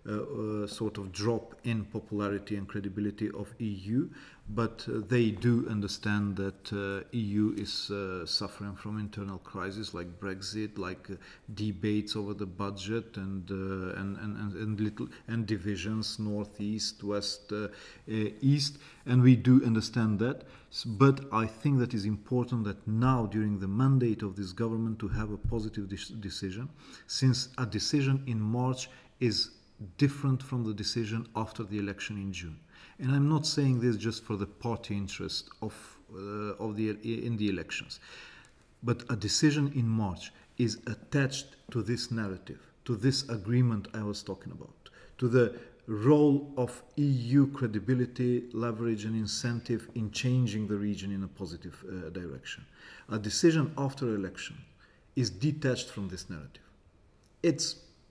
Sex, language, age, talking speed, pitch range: male, English, 40-59, 155 wpm, 100-120 Hz